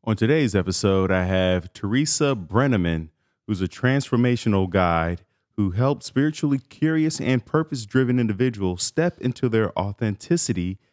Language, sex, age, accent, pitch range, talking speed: English, male, 30-49, American, 90-115 Hz, 120 wpm